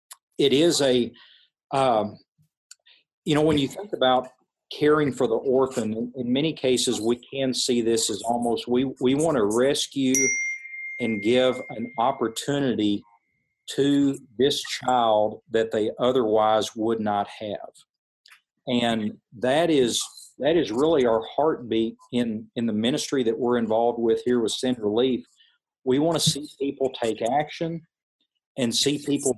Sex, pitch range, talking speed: male, 110-130 Hz, 145 wpm